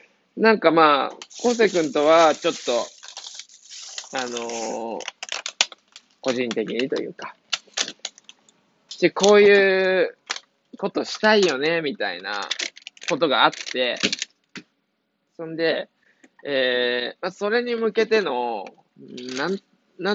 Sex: male